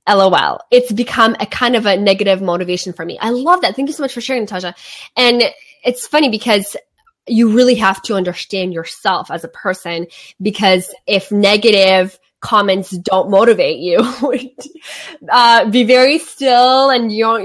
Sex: female